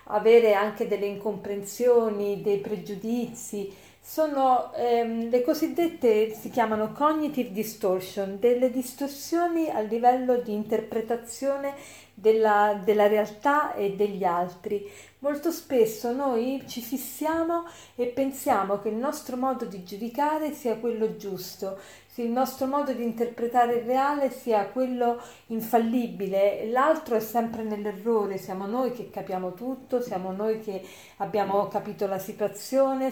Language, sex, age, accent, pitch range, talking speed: Italian, female, 40-59, native, 205-265 Hz, 125 wpm